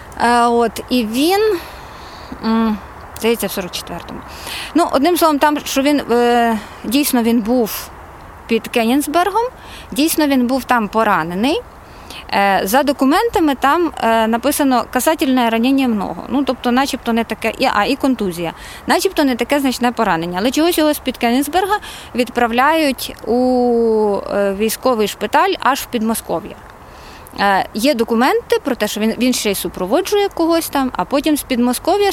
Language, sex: Ukrainian, female